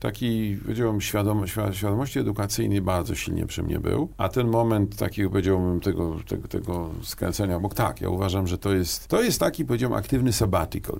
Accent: native